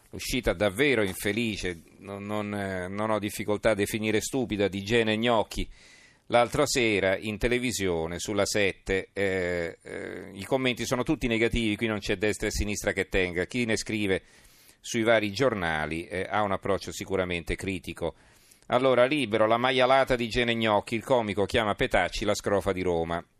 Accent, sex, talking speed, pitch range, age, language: native, male, 155 wpm, 100-115 Hz, 40-59, Italian